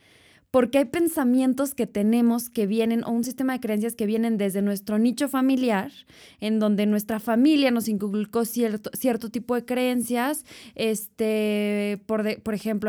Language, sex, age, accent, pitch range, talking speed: Spanish, female, 20-39, Mexican, 215-250 Hz, 160 wpm